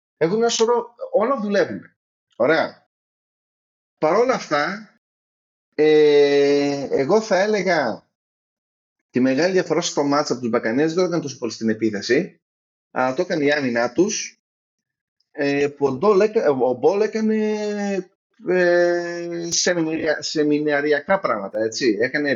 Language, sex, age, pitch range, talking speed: Greek, male, 30-49, 120-180 Hz, 125 wpm